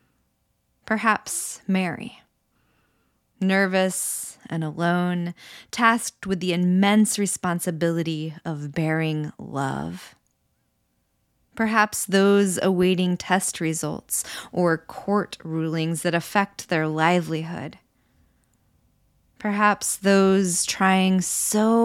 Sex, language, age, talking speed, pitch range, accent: female, English, 20-39, 80 wpm, 160-200 Hz, American